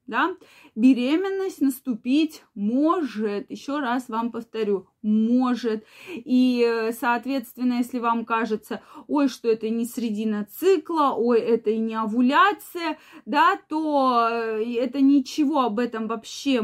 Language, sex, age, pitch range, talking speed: Russian, female, 20-39, 230-295 Hz, 115 wpm